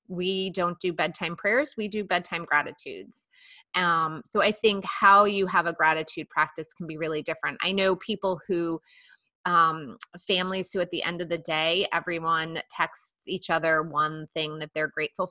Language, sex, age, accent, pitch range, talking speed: English, female, 30-49, American, 165-215 Hz, 175 wpm